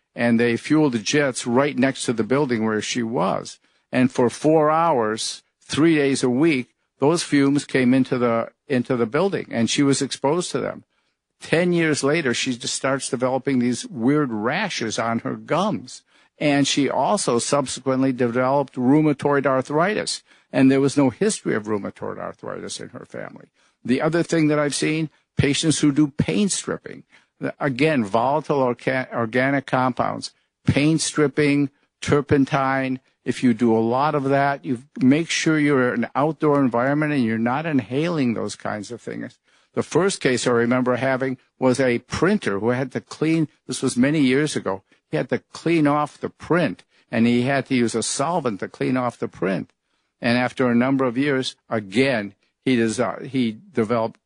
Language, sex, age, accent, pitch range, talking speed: English, male, 50-69, American, 120-145 Hz, 170 wpm